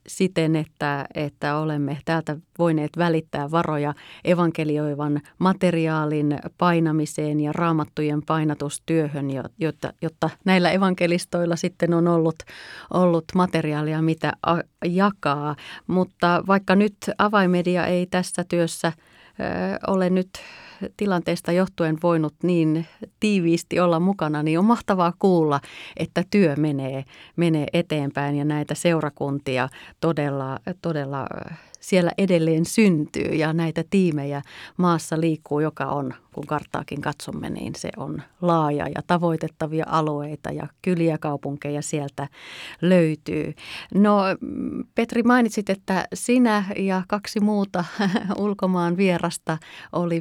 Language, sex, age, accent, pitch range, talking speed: Finnish, female, 30-49, native, 150-180 Hz, 110 wpm